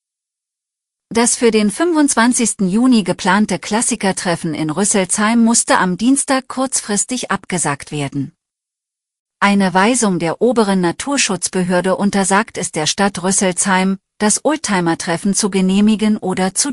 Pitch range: 175-230 Hz